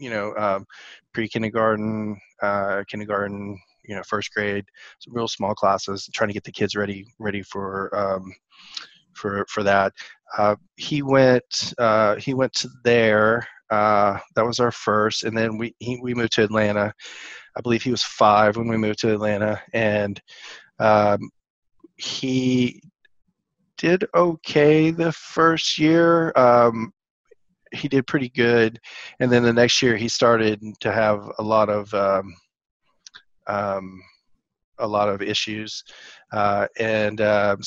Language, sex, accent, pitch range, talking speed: English, male, American, 105-120 Hz, 145 wpm